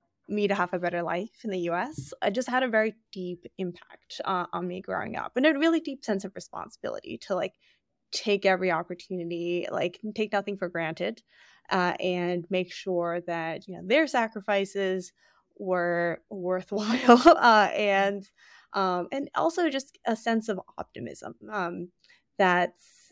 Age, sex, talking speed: 10-29, female, 160 wpm